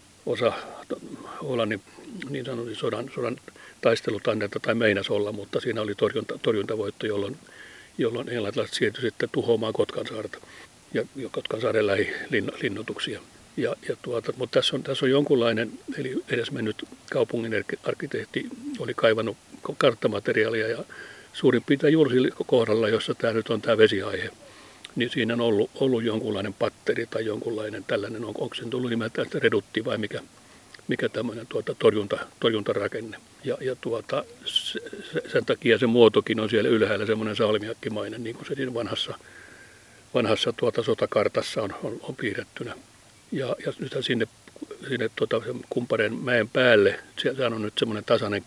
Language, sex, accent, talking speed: Finnish, male, native, 125 wpm